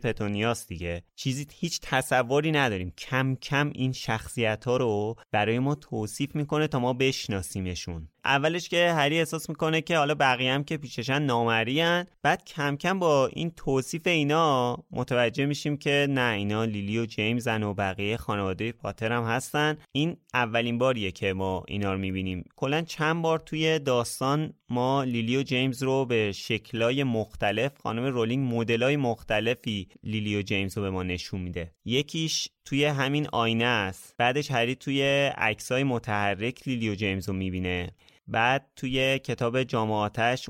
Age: 30-49